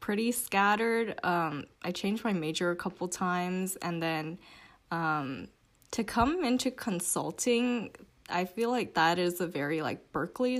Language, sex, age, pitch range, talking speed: English, female, 10-29, 160-190 Hz, 145 wpm